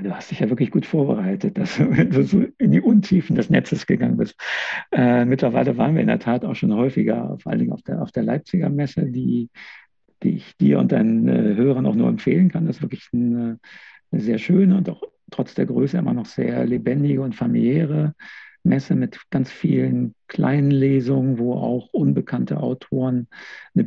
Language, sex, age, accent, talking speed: German, male, 50-69, German, 185 wpm